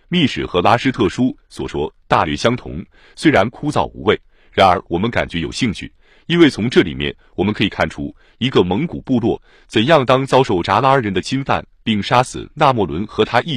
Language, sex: Chinese, male